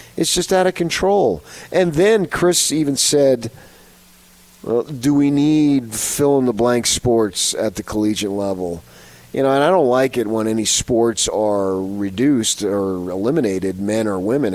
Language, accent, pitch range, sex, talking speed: English, American, 100-140 Hz, male, 150 wpm